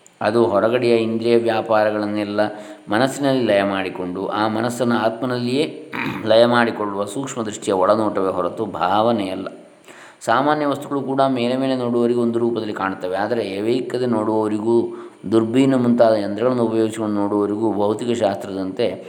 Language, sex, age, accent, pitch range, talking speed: Kannada, male, 20-39, native, 105-125 Hz, 115 wpm